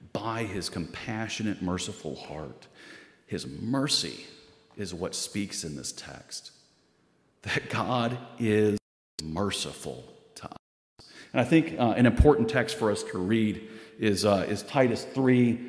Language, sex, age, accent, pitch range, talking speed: English, male, 40-59, American, 105-145 Hz, 135 wpm